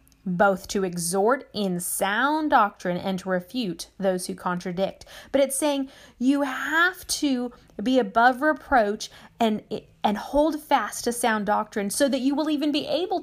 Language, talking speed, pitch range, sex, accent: English, 160 wpm, 200-275 Hz, female, American